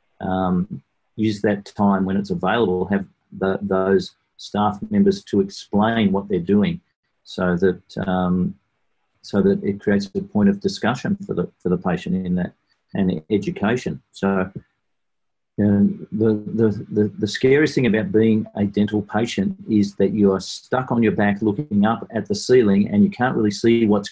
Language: English